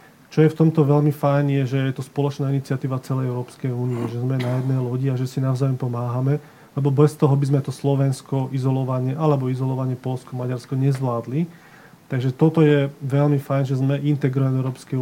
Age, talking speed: 30-49, 190 wpm